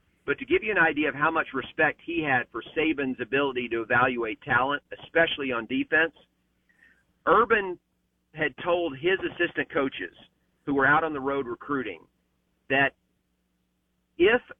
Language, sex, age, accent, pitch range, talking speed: English, male, 40-59, American, 130-165 Hz, 150 wpm